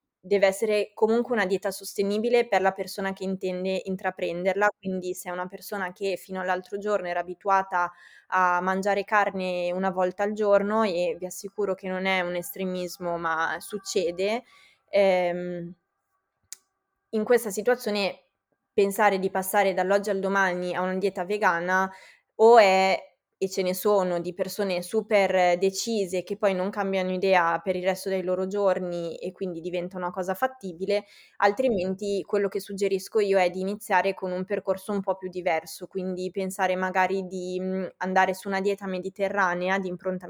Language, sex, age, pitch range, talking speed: Italian, female, 20-39, 180-200 Hz, 160 wpm